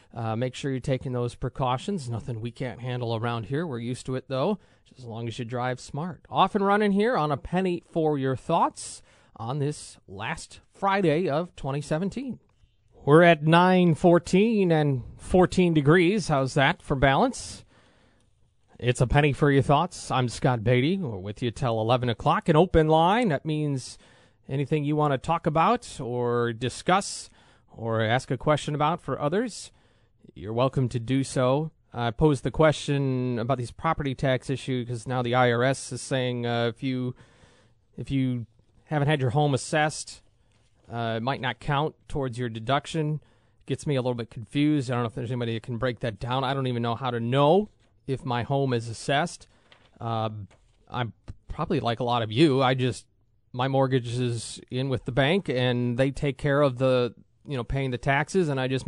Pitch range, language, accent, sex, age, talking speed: 120-150 Hz, English, American, male, 30-49, 185 wpm